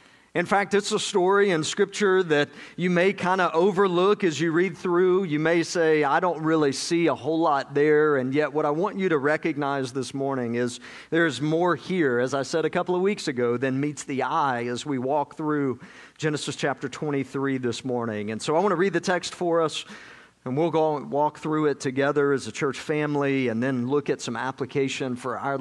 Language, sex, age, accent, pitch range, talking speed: English, male, 50-69, American, 125-160 Hz, 215 wpm